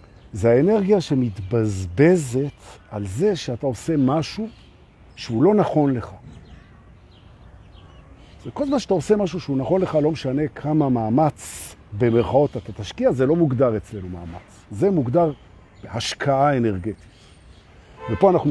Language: Hebrew